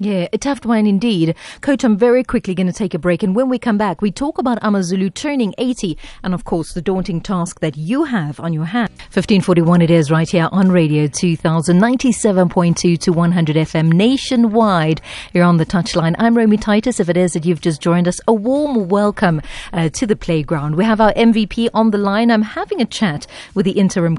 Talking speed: 225 wpm